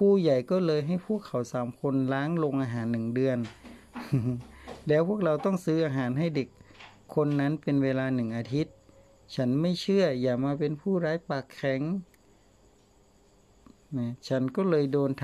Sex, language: male, Thai